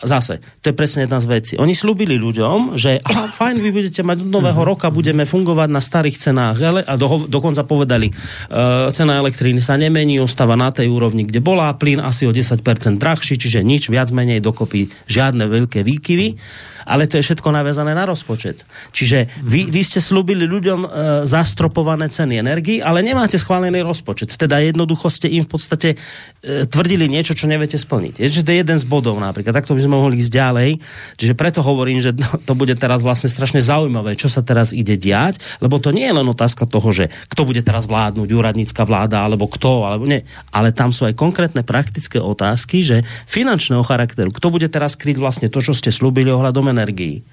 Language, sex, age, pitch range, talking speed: Slovak, male, 30-49, 120-155 Hz, 180 wpm